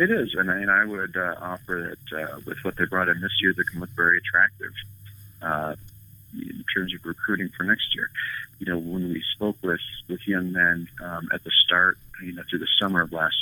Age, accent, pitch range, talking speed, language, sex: 40-59, American, 85-110 Hz, 225 wpm, English, male